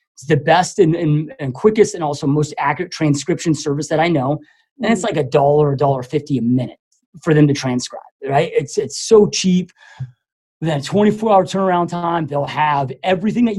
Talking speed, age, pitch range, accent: 185 wpm, 30-49, 145-195 Hz, American